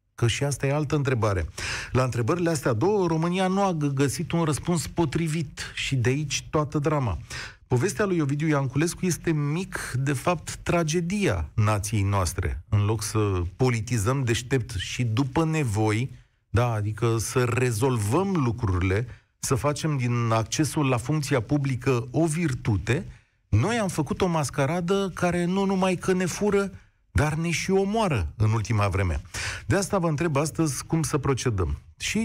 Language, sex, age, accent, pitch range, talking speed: Romanian, male, 40-59, native, 115-165 Hz, 150 wpm